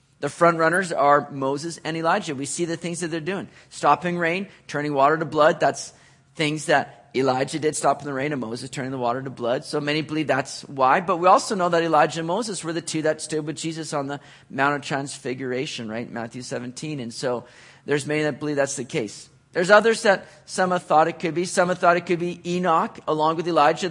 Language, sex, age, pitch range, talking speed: English, male, 40-59, 135-170 Hz, 230 wpm